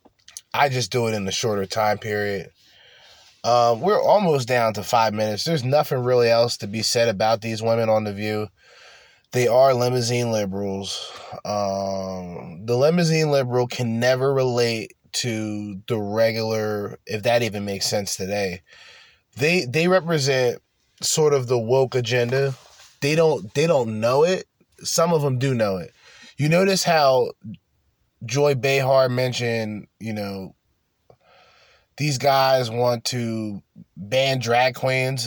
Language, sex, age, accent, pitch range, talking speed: English, male, 20-39, American, 105-130 Hz, 145 wpm